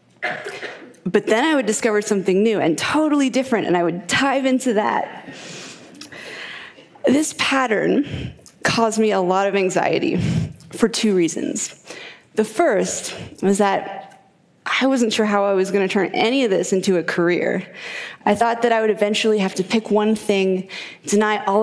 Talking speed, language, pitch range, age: 165 wpm, Arabic, 185-225 Hz, 20-39